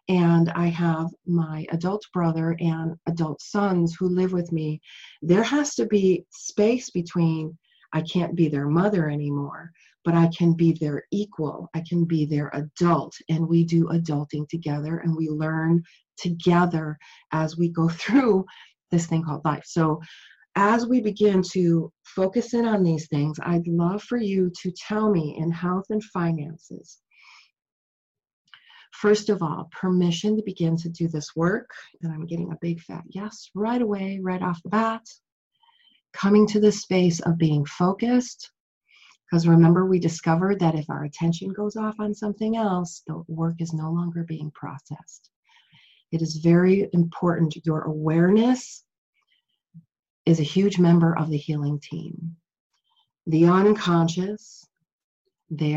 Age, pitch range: 40-59, 160-195 Hz